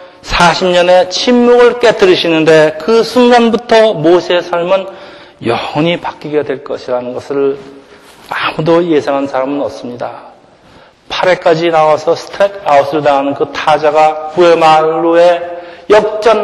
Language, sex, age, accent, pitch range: Korean, male, 40-59, native, 155-205 Hz